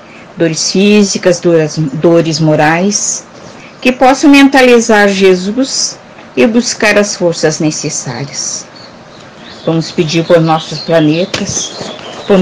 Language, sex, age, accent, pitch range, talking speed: Portuguese, female, 50-69, Brazilian, 165-225 Hz, 95 wpm